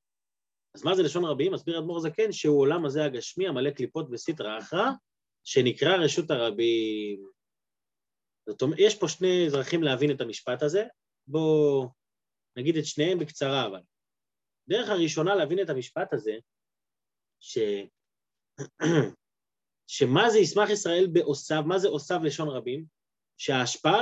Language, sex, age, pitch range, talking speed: Hebrew, male, 30-49, 135-195 Hz, 130 wpm